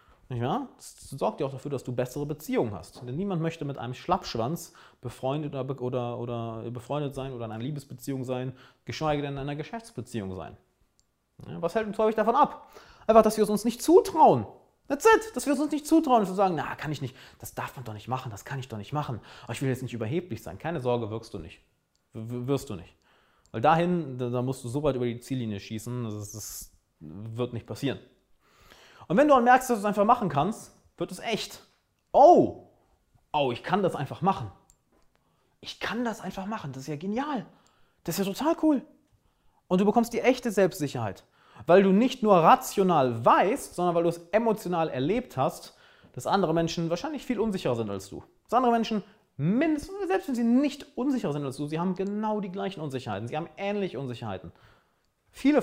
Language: German